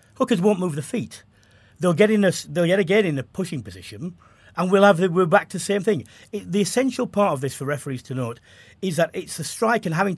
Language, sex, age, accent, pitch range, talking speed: English, male, 40-59, British, 125-195 Hz, 255 wpm